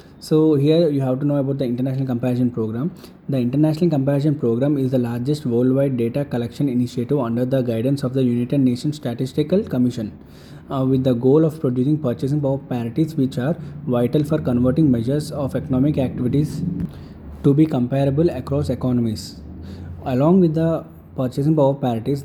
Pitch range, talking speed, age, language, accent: 125-150 Hz, 160 wpm, 20-39, English, Indian